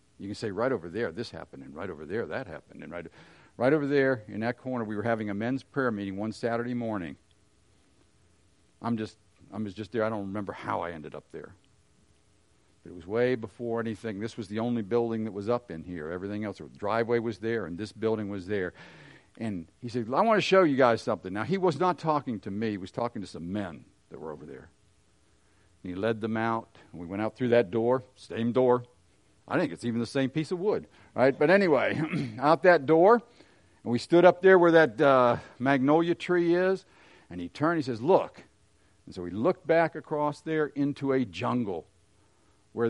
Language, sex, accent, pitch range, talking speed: English, male, American, 100-140 Hz, 220 wpm